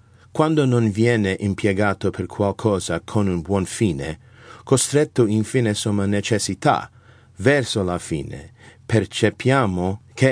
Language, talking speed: Italian, 110 wpm